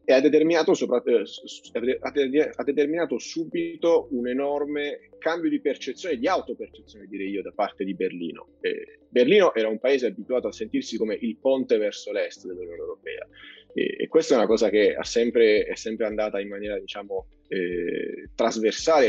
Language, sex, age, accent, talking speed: Italian, male, 30-49, native, 155 wpm